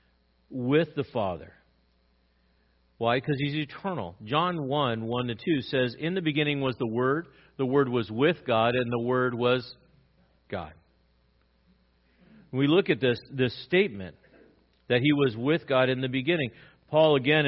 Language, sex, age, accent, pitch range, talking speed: English, male, 50-69, American, 110-150 Hz, 150 wpm